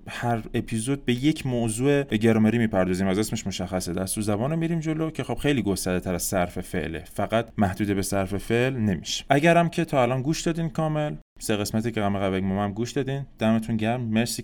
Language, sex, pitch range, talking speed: French, male, 100-135 Hz, 195 wpm